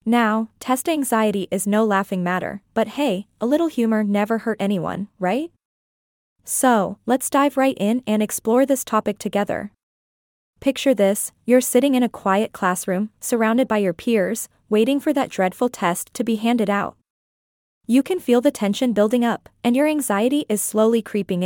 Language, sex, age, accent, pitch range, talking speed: English, female, 20-39, American, 195-250 Hz, 170 wpm